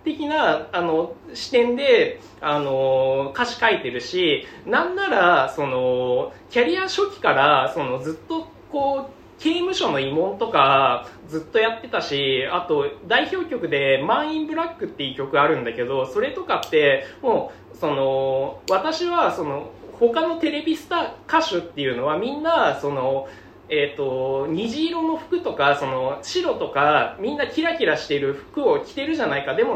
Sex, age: male, 20-39